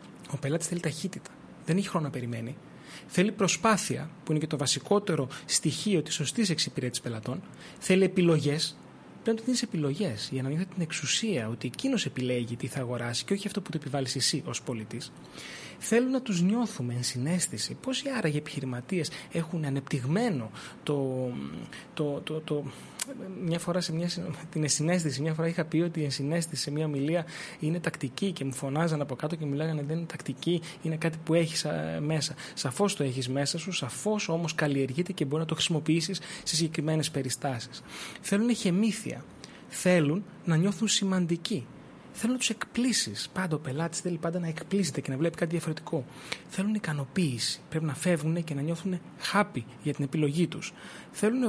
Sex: male